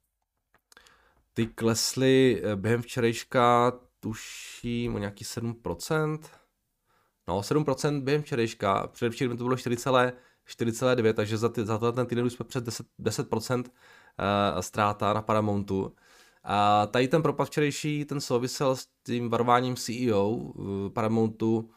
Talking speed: 110 wpm